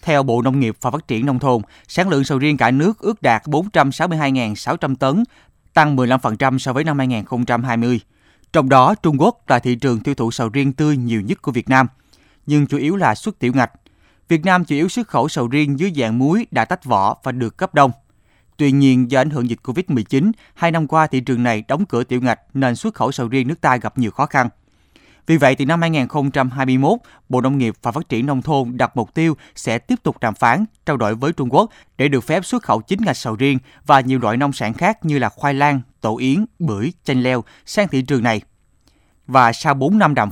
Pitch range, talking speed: 120-155 Hz, 230 wpm